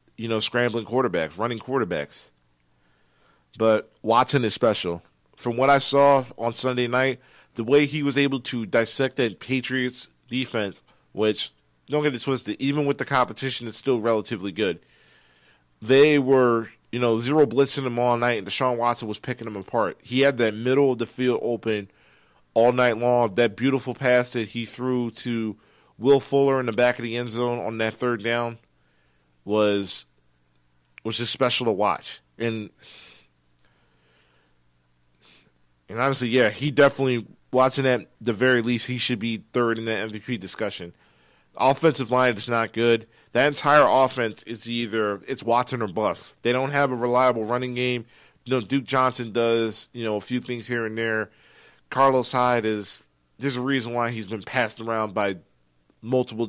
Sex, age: male, 40-59